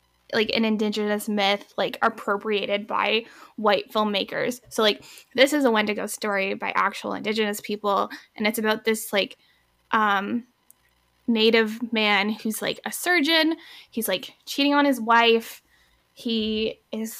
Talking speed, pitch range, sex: 140 wpm, 210-265 Hz, female